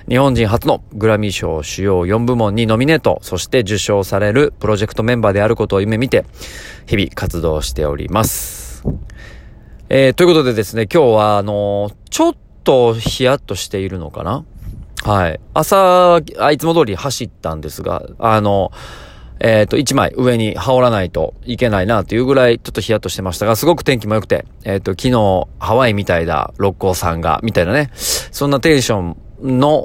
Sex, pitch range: male, 95-130 Hz